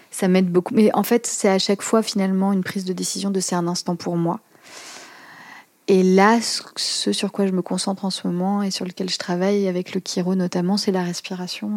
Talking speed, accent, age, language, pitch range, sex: 225 wpm, French, 30-49, French, 180-205 Hz, female